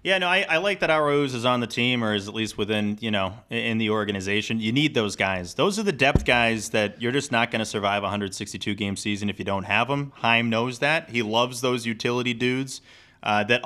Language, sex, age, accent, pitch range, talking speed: English, male, 30-49, American, 105-130 Hz, 240 wpm